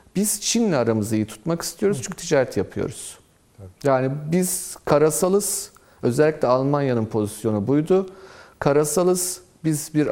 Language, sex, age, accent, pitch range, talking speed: Turkish, male, 40-59, native, 115-170 Hz, 115 wpm